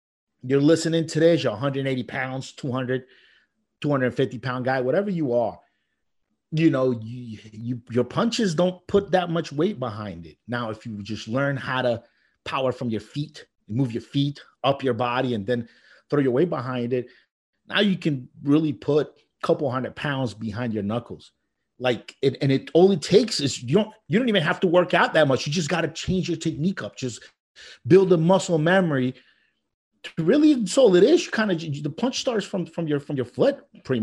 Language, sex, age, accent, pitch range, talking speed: English, male, 30-49, American, 125-180 Hz, 200 wpm